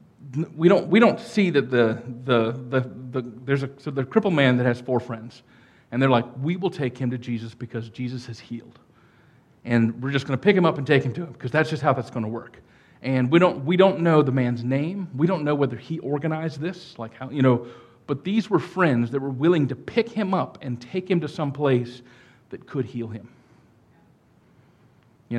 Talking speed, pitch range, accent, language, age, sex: 220 wpm, 120-150 Hz, American, English, 40-59, male